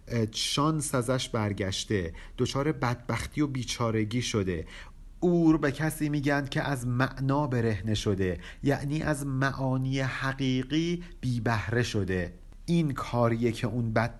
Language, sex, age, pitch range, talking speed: Persian, male, 50-69, 115-145 Hz, 120 wpm